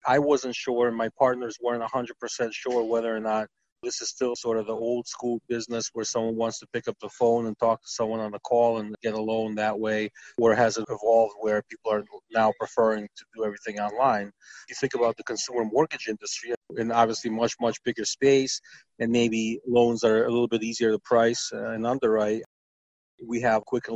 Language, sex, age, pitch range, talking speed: English, male, 30-49, 110-120 Hz, 210 wpm